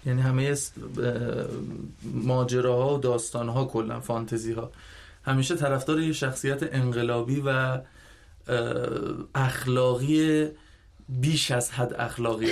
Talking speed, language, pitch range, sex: 95 wpm, Persian, 120-145 Hz, male